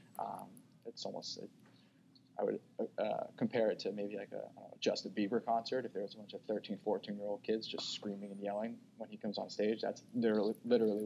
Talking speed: 195 wpm